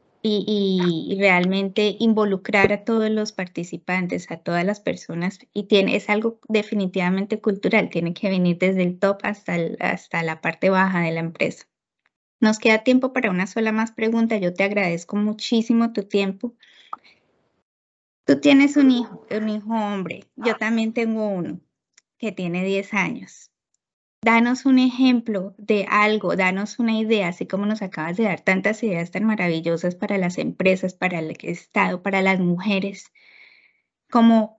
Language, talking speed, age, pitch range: English, 155 wpm, 10-29, 185-230 Hz